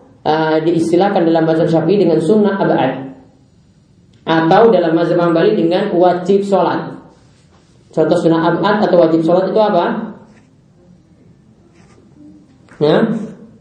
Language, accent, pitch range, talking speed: Indonesian, native, 140-195 Hz, 105 wpm